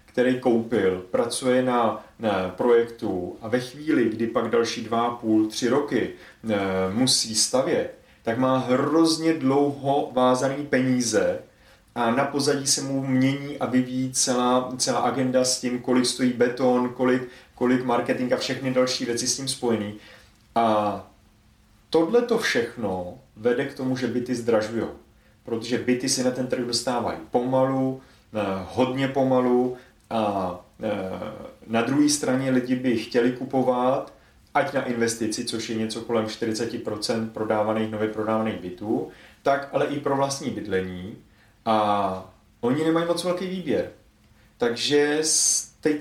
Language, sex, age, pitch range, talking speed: Czech, male, 30-49, 110-135 Hz, 135 wpm